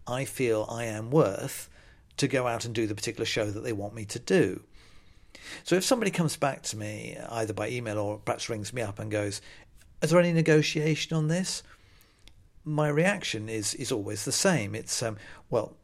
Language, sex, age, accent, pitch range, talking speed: English, male, 50-69, British, 105-135 Hz, 195 wpm